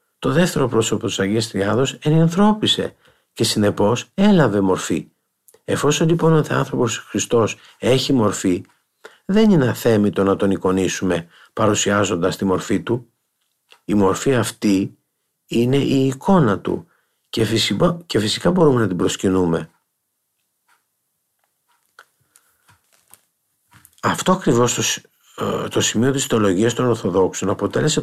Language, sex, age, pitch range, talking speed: Greek, male, 50-69, 105-150 Hz, 105 wpm